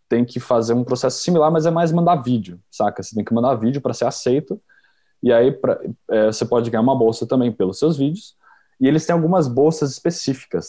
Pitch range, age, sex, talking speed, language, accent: 110-130 Hz, 20-39, male, 220 wpm, Portuguese, Brazilian